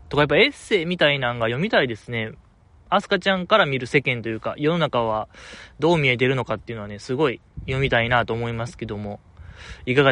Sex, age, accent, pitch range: male, 20-39, native, 105-145 Hz